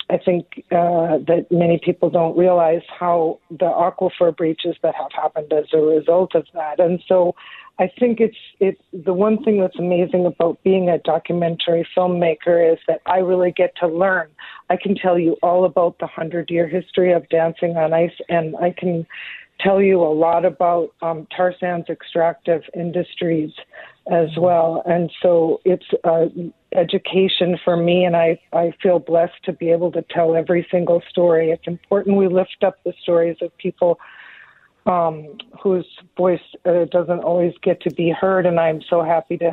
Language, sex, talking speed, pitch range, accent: English, female, 175 wpm, 165-180 Hz, American